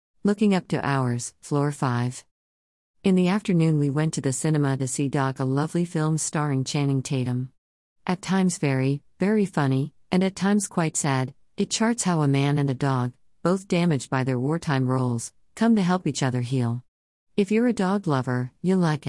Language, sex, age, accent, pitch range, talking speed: English, female, 50-69, American, 130-165 Hz, 190 wpm